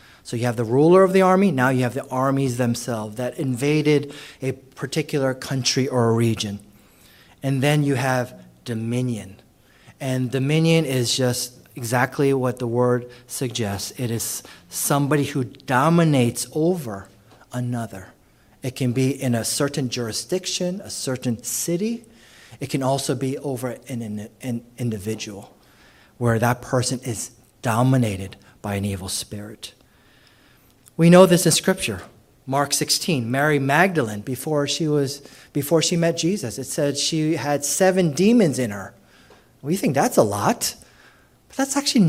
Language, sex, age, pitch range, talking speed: English, male, 30-49, 120-155 Hz, 145 wpm